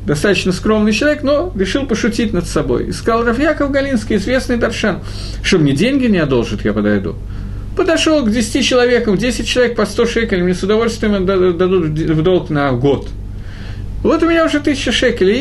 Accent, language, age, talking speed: native, Russian, 50-69, 170 wpm